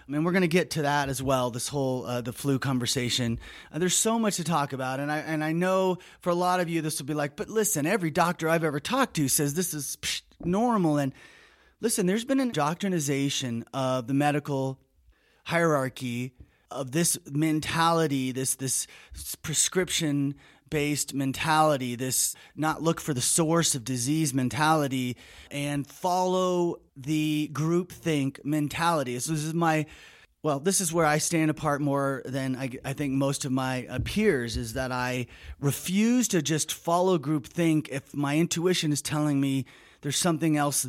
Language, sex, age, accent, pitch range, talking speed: English, male, 30-49, American, 135-170 Hz, 175 wpm